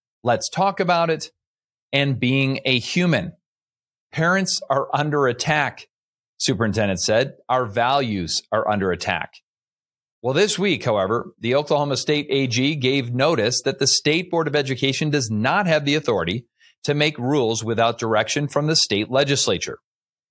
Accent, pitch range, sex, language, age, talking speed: American, 120-155 Hz, male, English, 40-59, 145 wpm